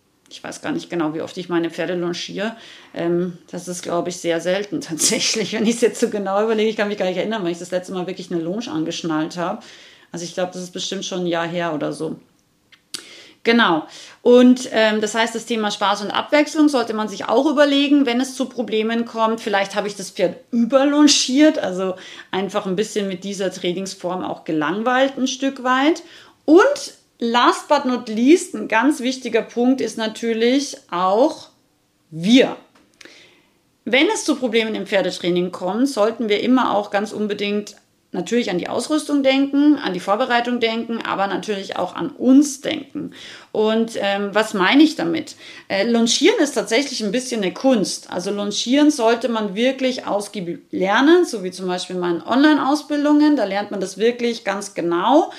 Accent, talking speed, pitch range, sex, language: German, 180 wpm, 190-255 Hz, female, German